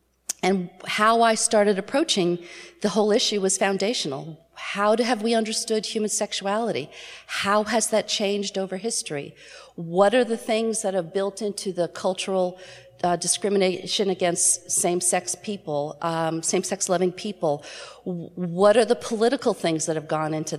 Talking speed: 145 wpm